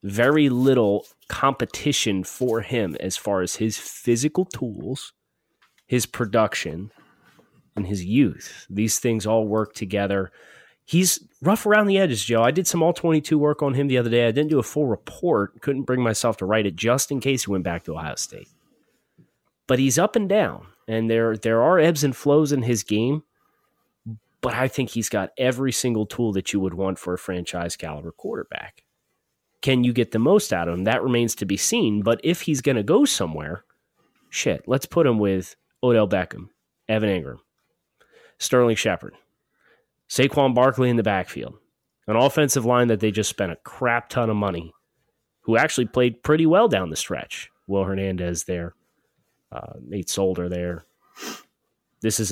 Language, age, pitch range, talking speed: English, 30-49, 100-135 Hz, 175 wpm